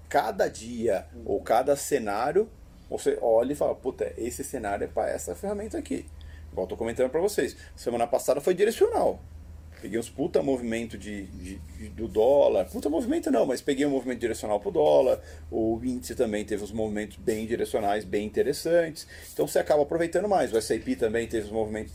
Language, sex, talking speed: Portuguese, male, 180 wpm